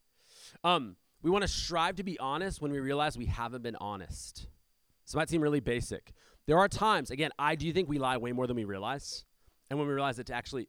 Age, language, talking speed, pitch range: 30-49, English, 230 wpm, 115-150 Hz